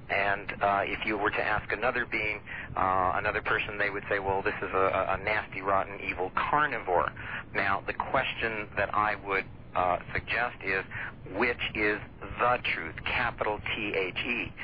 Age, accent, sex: 50-69, American, male